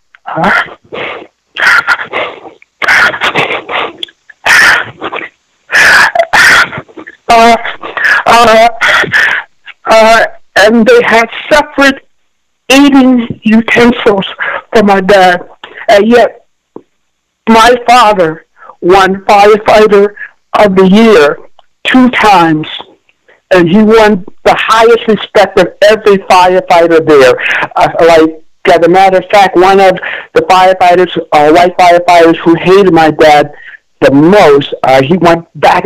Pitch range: 160-225 Hz